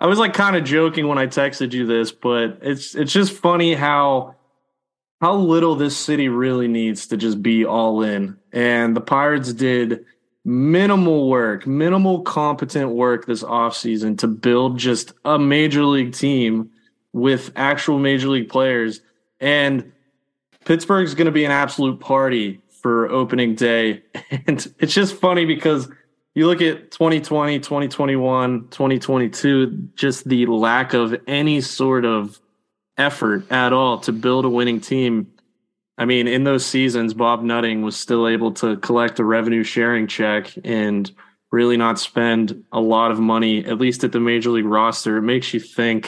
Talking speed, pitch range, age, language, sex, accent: 160 wpm, 115-145 Hz, 20-39, English, male, American